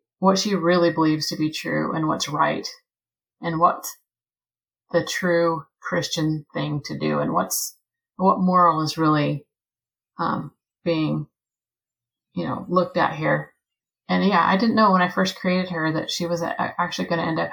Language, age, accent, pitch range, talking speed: English, 30-49, American, 155-185 Hz, 170 wpm